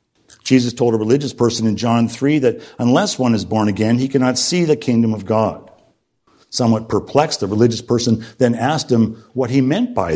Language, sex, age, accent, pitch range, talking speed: English, male, 50-69, American, 115-140 Hz, 195 wpm